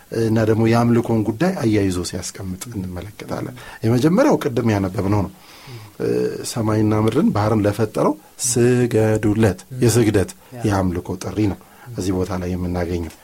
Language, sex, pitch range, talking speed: Amharic, male, 105-145 Hz, 110 wpm